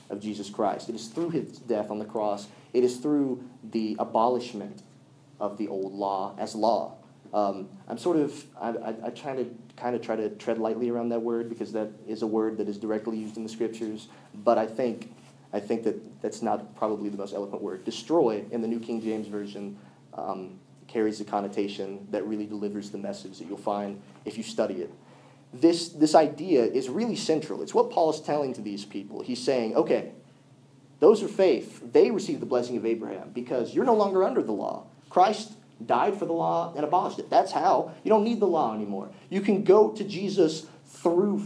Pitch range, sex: 105-150 Hz, male